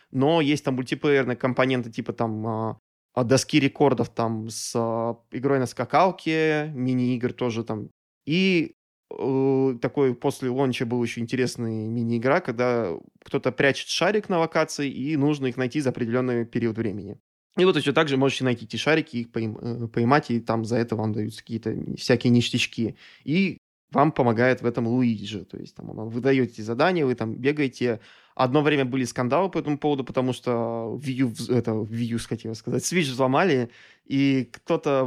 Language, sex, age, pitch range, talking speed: Russian, male, 20-39, 115-140 Hz, 160 wpm